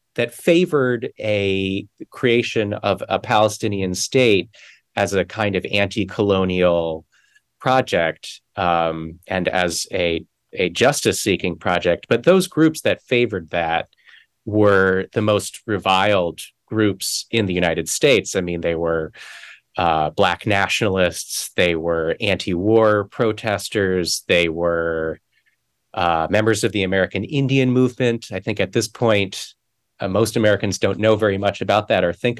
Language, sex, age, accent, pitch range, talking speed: English, male, 30-49, American, 85-110 Hz, 130 wpm